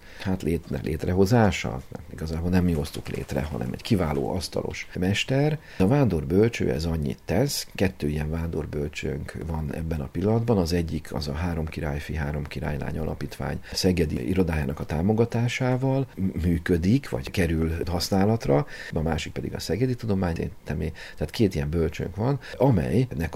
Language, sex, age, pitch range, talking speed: Hungarian, male, 50-69, 75-95 Hz, 140 wpm